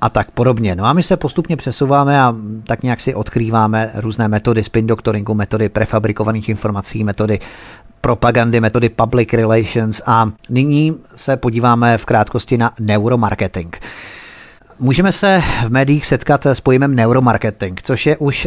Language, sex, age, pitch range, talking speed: Czech, male, 30-49, 110-130 Hz, 145 wpm